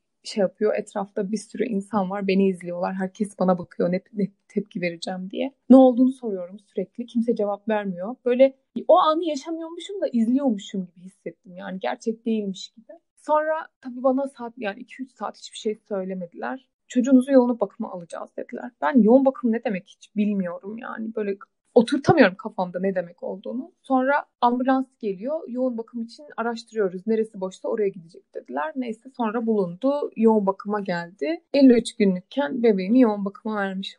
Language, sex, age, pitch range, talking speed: Turkish, female, 30-49, 200-255 Hz, 155 wpm